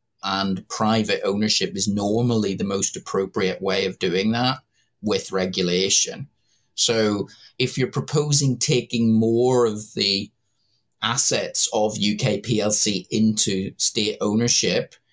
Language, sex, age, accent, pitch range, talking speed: English, male, 30-49, British, 105-125 Hz, 115 wpm